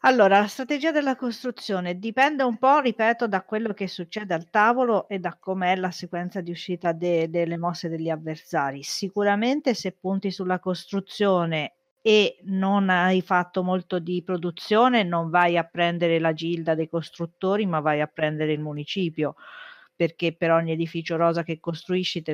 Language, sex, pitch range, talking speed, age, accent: Italian, female, 160-190 Hz, 160 wpm, 40-59, native